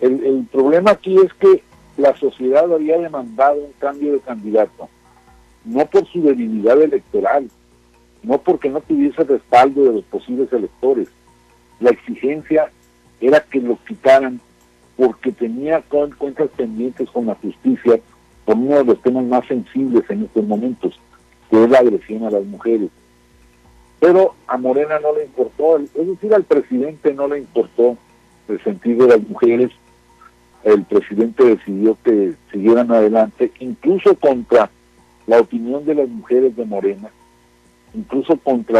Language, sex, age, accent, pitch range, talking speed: Spanish, male, 50-69, Mexican, 105-150 Hz, 145 wpm